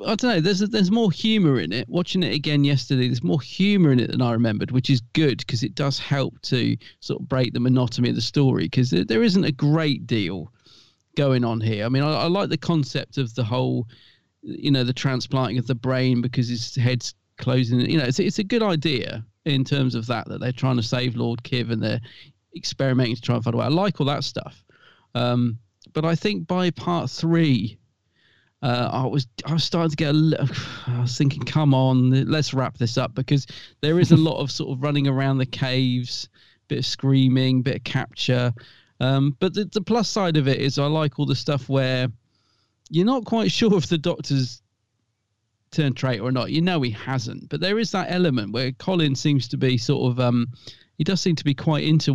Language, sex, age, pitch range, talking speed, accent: English, male, 40-59, 125-155 Hz, 225 wpm, British